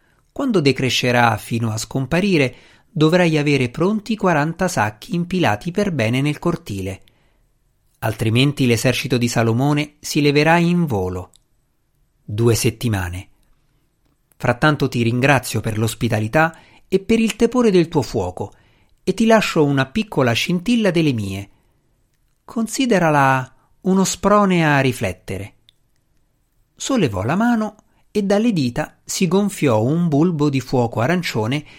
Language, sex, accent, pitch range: Italian, male, native, 115-170 Hz